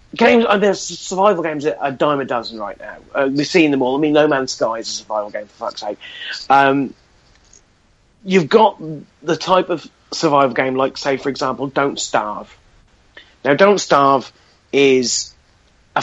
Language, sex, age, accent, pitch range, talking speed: English, male, 40-59, British, 135-170 Hz, 180 wpm